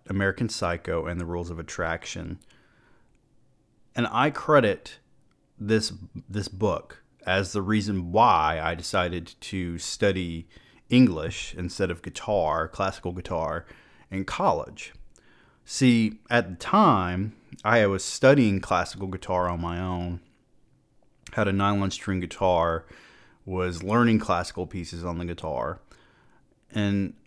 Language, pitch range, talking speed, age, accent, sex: English, 90-110 Hz, 120 wpm, 30-49, American, male